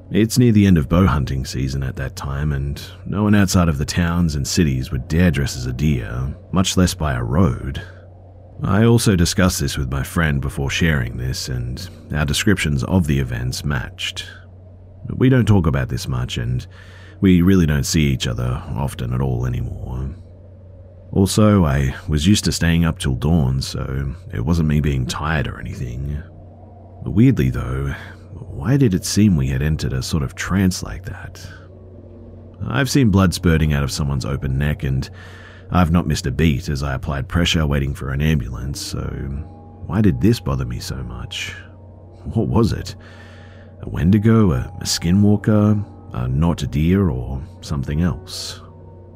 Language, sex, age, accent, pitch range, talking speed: English, male, 30-49, Australian, 70-95 Hz, 170 wpm